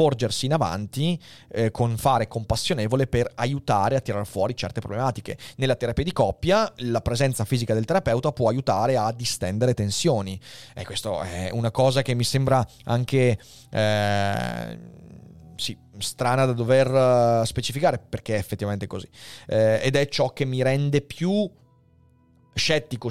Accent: native